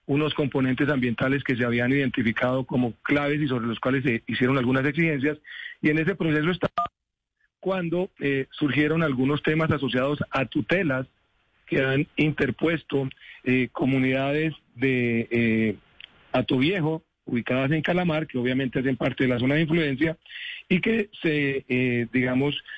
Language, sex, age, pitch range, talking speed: Spanish, male, 40-59, 130-160 Hz, 145 wpm